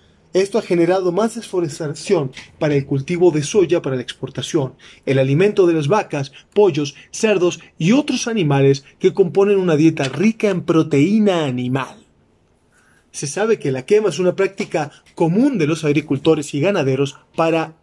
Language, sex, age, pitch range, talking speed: Spanish, male, 30-49, 140-190 Hz, 155 wpm